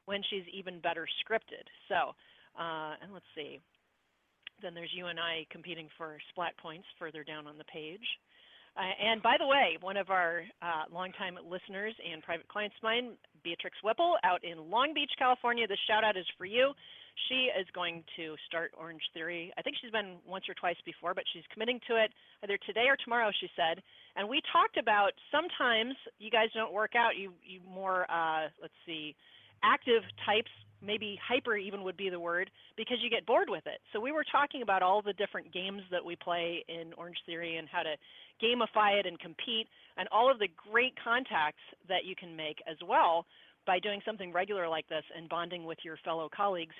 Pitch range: 165-220 Hz